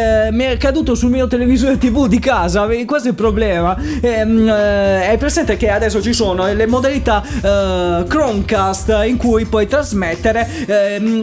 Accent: Italian